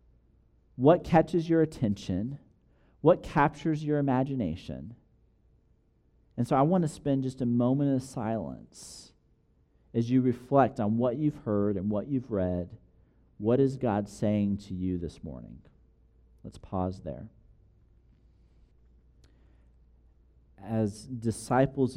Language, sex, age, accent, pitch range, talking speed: English, male, 40-59, American, 105-145 Hz, 115 wpm